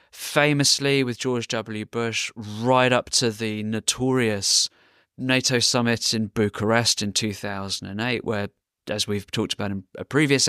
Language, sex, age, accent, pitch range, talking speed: German, male, 20-39, British, 100-120 Hz, 135 wpm